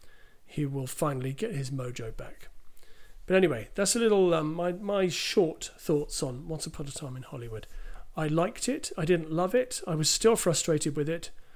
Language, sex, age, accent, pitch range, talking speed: English, male, 40-59, British, 145-180 Hz, 190 wpm